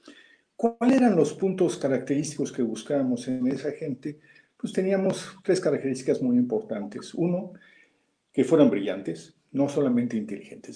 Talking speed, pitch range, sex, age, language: 130 wpm, 135-220 Hz, male, 50-69, Spanish